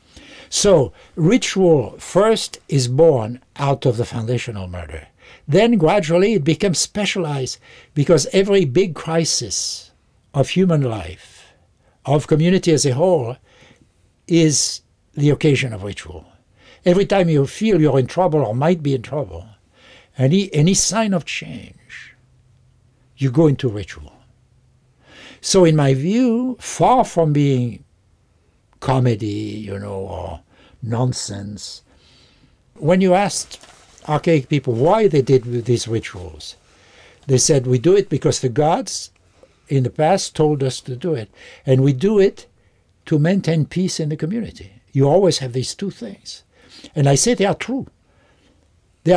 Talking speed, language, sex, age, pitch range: 140 wpm, English, male, 60-79, 115-170 Hz